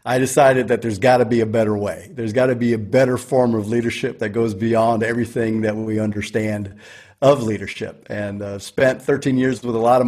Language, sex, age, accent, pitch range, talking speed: German, male, 40-59, American, 110-125 Hz, 220 wpm